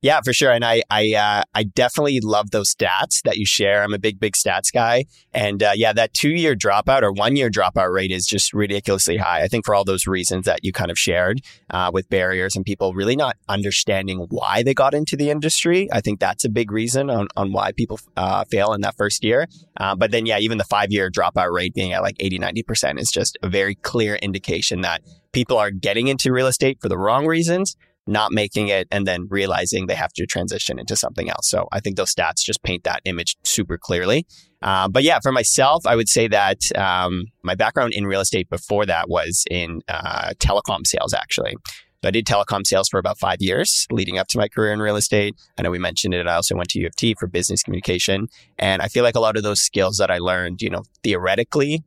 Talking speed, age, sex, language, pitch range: 235 wpm, 30-49, male, English, 95-120 Hz